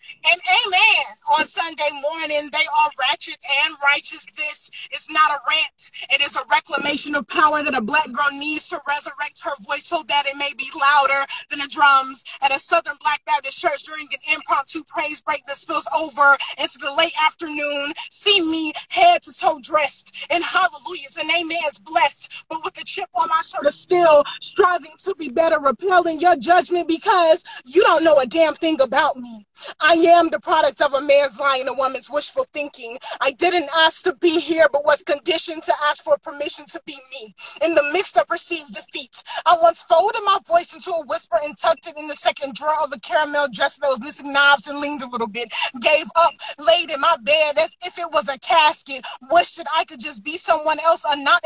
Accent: American